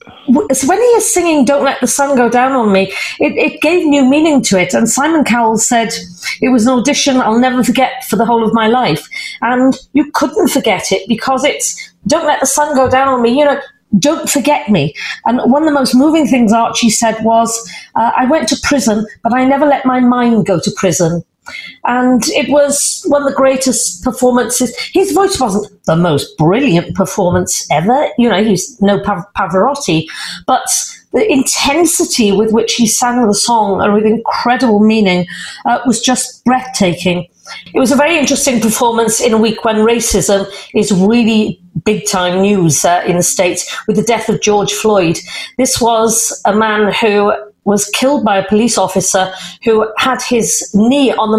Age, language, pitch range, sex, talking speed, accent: 40-59, English, 200-255 Hz, female, 190 wpm, British